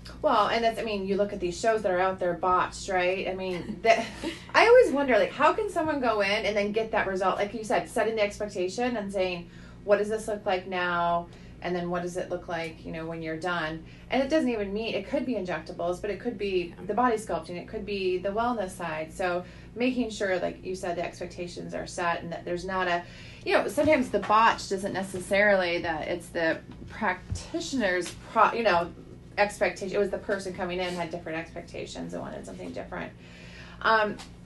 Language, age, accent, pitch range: English, 30-49, American, 175-205 Hz